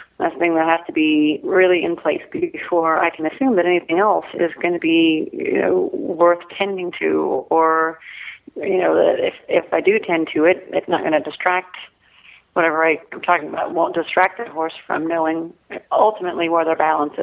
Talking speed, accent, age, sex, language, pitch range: 190 wpm, American, 40-59, female, English, 160-195 Hz